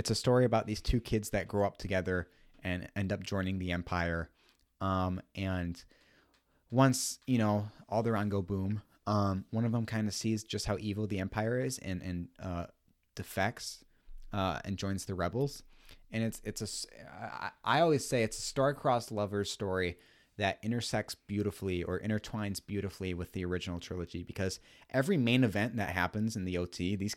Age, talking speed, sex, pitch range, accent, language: 30-49, 180 wpm, male, 90-110 Hz, American, English